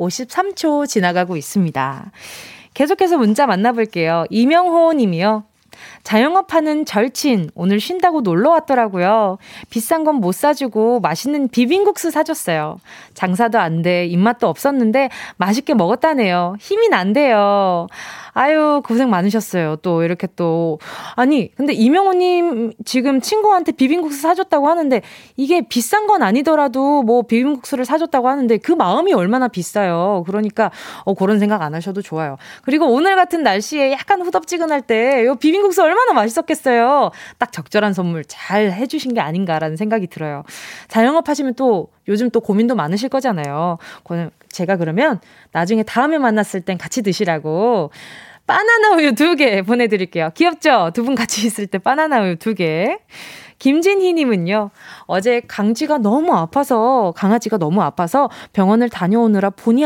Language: Korean